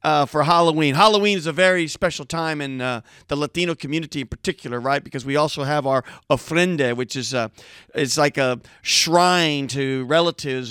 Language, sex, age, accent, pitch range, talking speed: English, male, 40-59, American, 140-195 Hz, 180 wpm